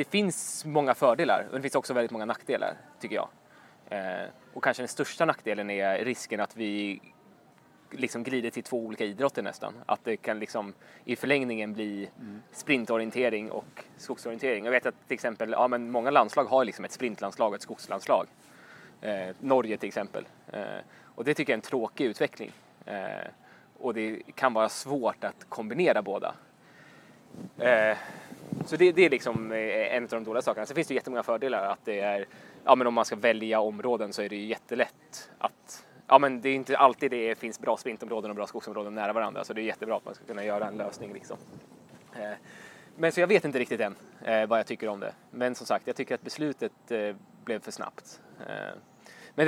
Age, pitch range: 20-39, 105-135 Hz